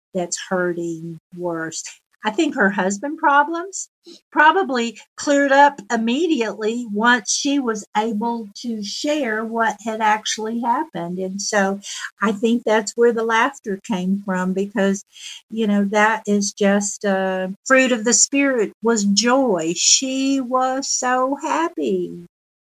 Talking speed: 130 wpm